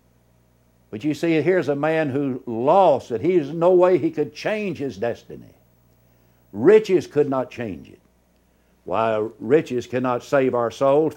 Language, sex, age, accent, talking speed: English, male, 60-79, American, 150 wpm